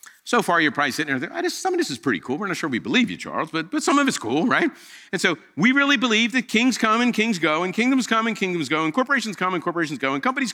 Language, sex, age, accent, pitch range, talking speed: English, male, 50-69, American, 155-260 Hz, 305 wpm